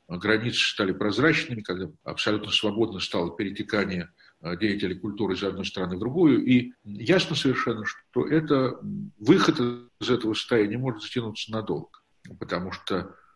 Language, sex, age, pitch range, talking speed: Russian, male, 50-69, 100-140 Hz, 130 wpm